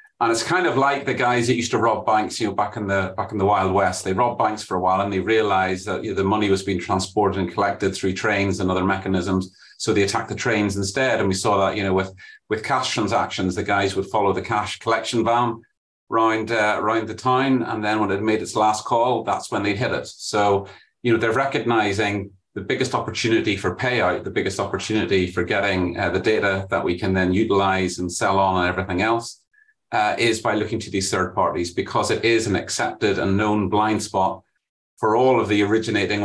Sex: male